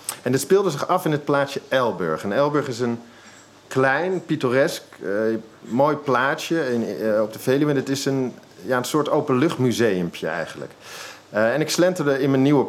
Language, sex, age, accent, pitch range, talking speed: Dutch, male, 50-69, Dutch, 115-145 Hz, 180 wpm